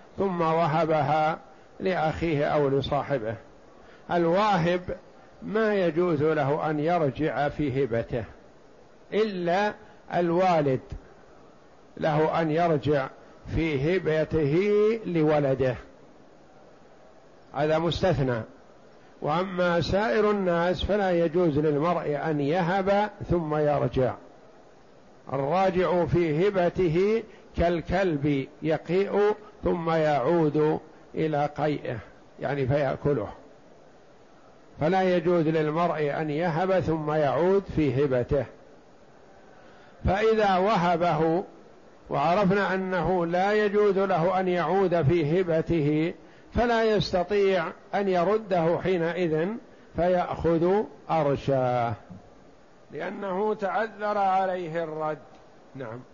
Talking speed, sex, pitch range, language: 80 wpm, male, 150-185 Hz, Arabic